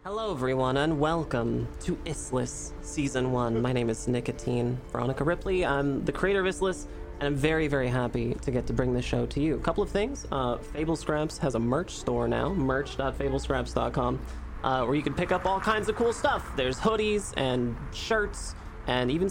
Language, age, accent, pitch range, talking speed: English, 20-39, American, 120-160 Hz, 195 wpm